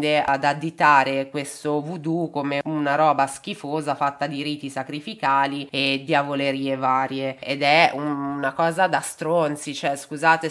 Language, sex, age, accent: Italian, female, 20-39, native